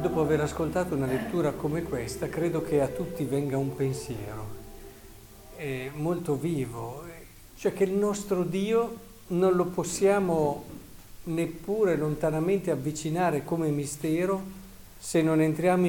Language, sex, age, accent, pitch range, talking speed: Italian, male, 50-69, native, 120-165 Hz, 125 wpm